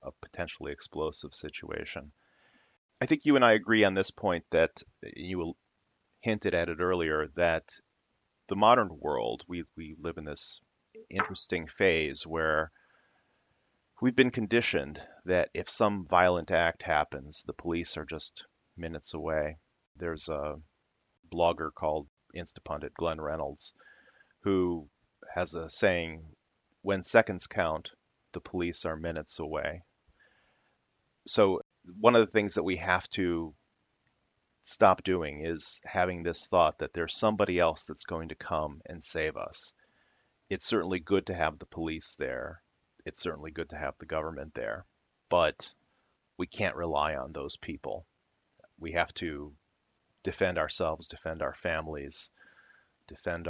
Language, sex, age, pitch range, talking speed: English, male, 30-49, 80-90 Hz, 140 wpm